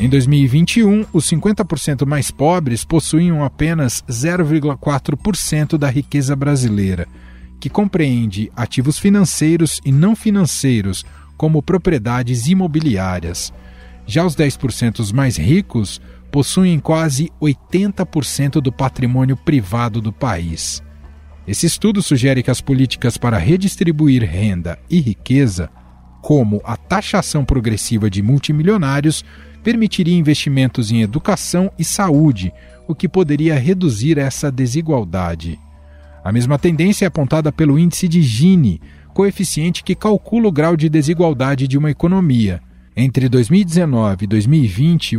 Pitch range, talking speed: 115-165 Hz, 115 wpm